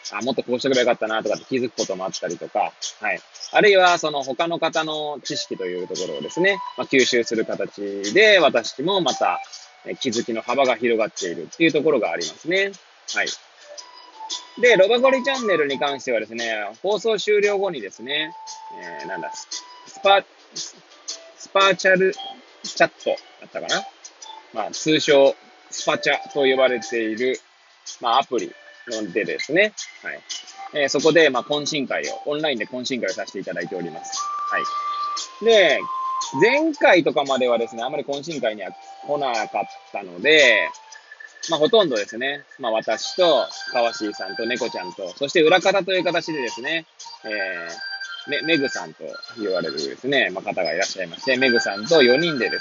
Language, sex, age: Japanese, male, 20-39